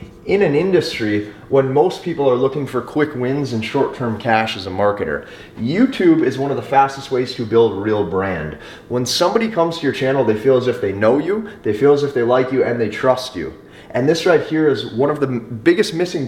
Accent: American